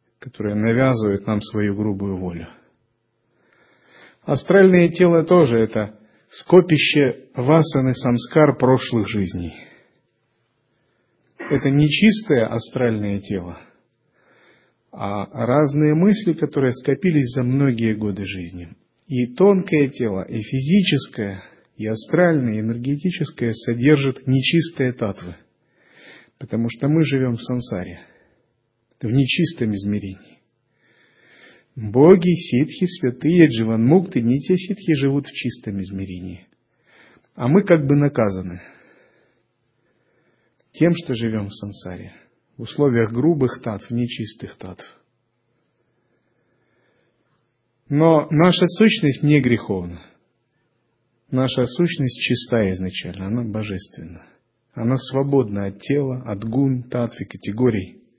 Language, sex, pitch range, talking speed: Russian, male, 110-145 Hz, 100 wpm